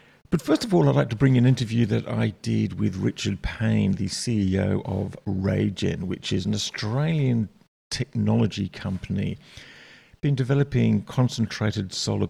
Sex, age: male, 50-69